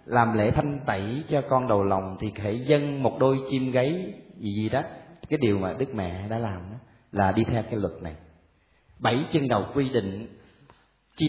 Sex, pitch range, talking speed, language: male, 105-155 Hz, 195 wpm, Vietnamese